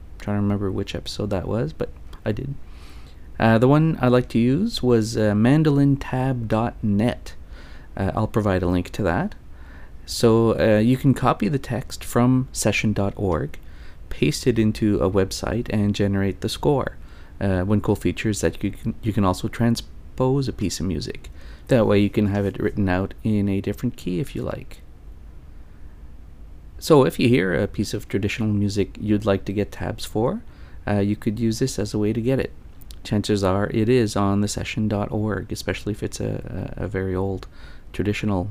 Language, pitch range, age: English, 80-110 Hz, 30-49